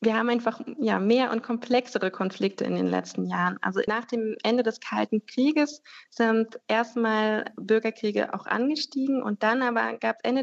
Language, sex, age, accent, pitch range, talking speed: German, female, 20-39, German, 195-225 Hz, 175 wpm